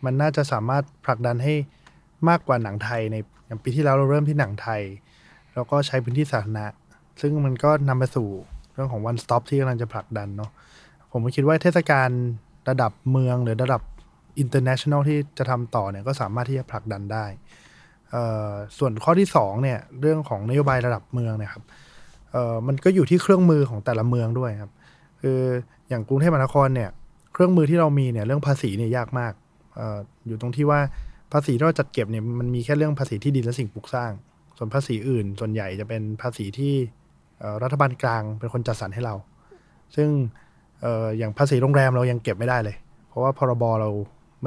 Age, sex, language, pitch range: 20-39, male, Thai, 115-145 Hz